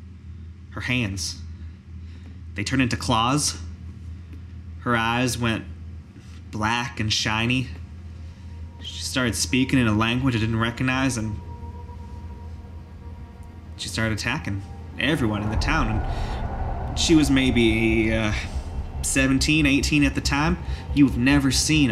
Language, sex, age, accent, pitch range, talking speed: English, male, 20-39, American, 85-125 Hz, 115 wpm